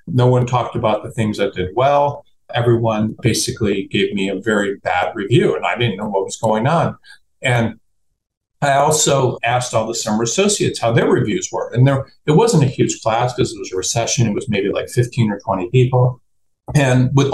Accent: American